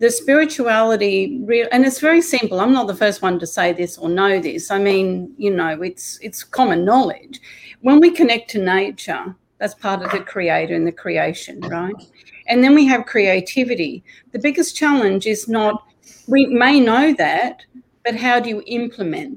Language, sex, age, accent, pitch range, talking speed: English, female, 40-59, Australian, 195-250 Hz, 180 wpm